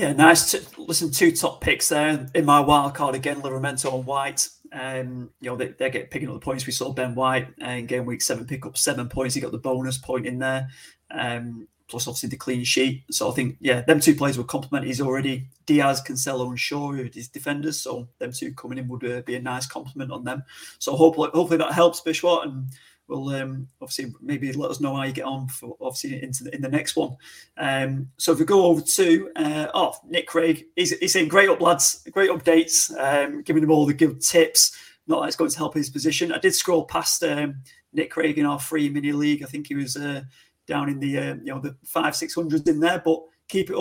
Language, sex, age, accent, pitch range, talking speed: English, male, 30-49, British, 130-160 Hz, 240 wpm